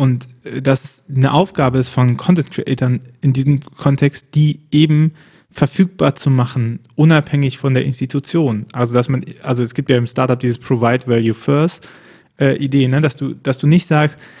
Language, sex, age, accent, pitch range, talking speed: German, male, 20-39, German, 130-150 Hz, 170 wpm